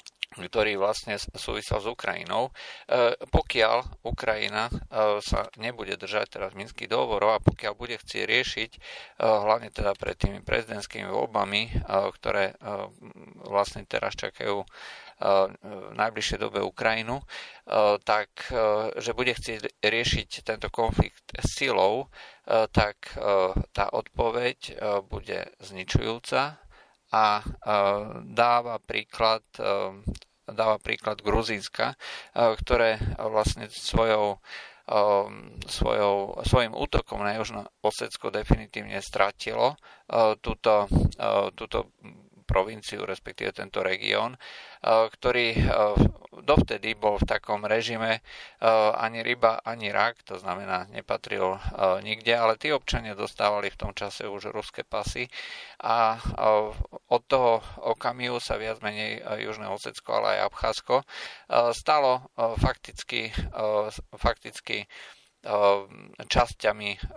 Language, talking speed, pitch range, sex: Slovak, 95 wpm, 100-115 Hz, male